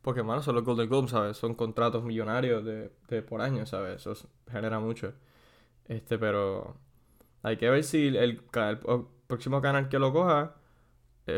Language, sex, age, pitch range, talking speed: Spanish, male, 10-29, 110-130 Hz, 180 wpm